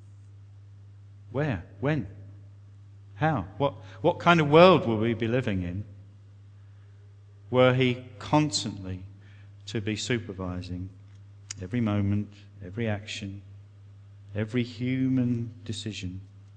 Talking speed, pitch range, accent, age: 95 wpm, 100-115 Hz, British, 50-69